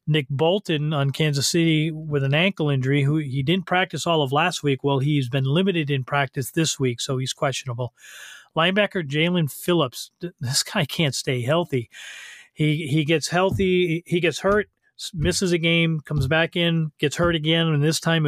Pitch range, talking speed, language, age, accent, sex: 140-170 Hz, 180 wpm, English, 40-59, American, male